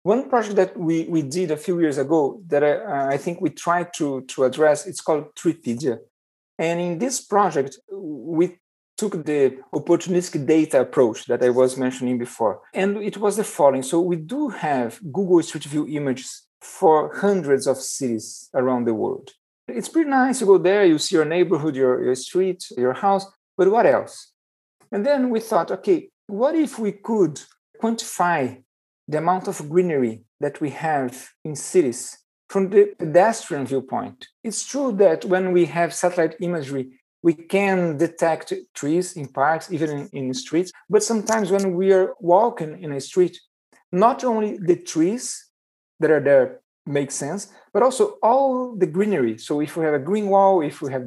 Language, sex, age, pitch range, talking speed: English, male, 50-69, 145-200 Hz, 175 wpm